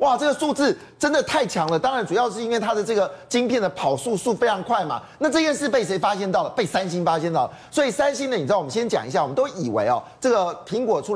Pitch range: 195-265 Hz